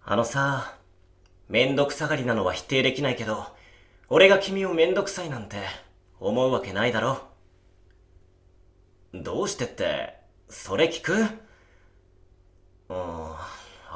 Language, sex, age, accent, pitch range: Japanese, male, 30-49, native, 80-115 Hz